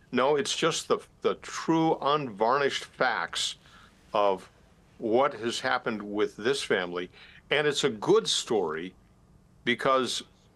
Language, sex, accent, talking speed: English, male, American, 120 wpm